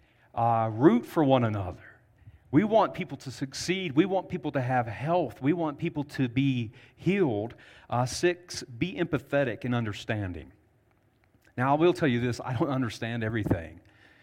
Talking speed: 160 wpm